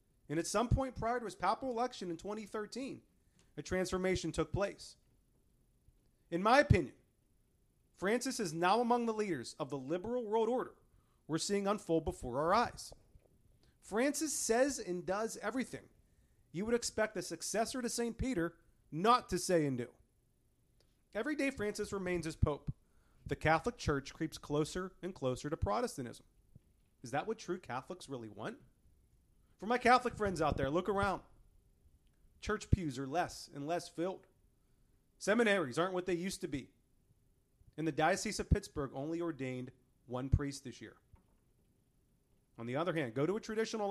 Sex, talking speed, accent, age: male, 160 wpm, American, 40-59